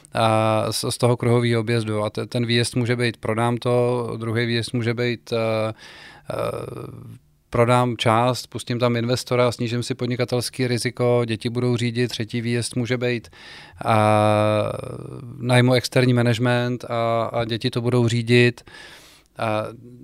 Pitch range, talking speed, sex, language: 115-125 Hz, 140 wpm, male, Czech